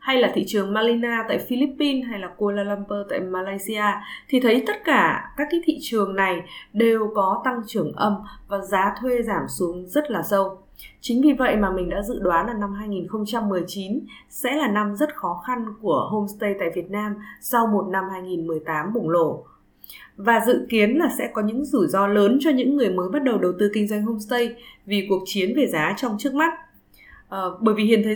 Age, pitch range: 20-39, 200-255 Hz